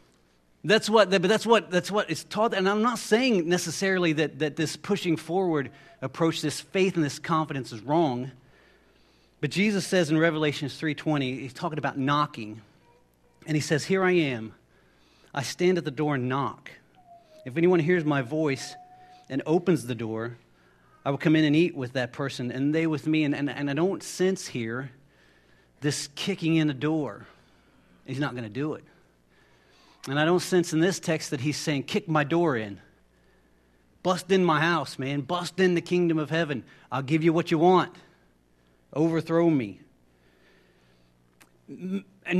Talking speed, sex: 175 wpm, male